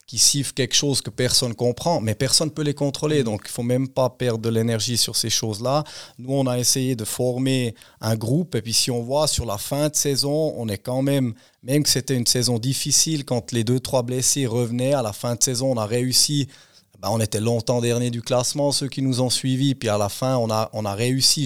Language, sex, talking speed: German, male, 250 wpm